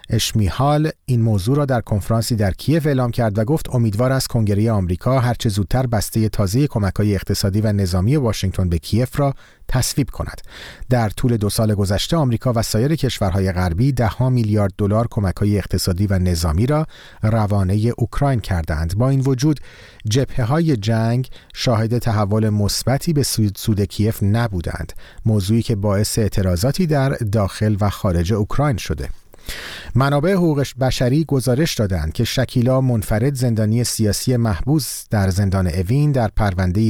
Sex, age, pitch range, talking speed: male, 40-59, 100-130 Hz, 145 wpm